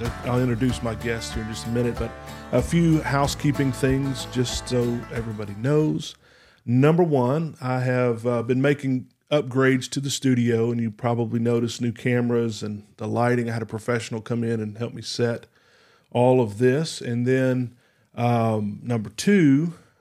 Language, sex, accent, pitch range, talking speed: English, male, American, 115-130 Hz, 170 wpm